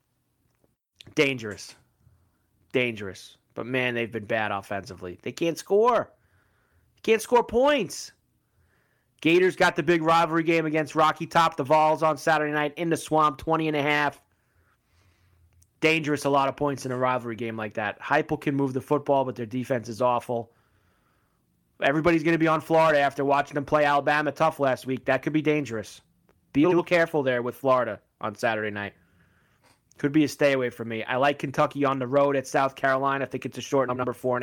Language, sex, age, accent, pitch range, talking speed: English, male, 30-49, American, 120-155 Hz, 190 wpm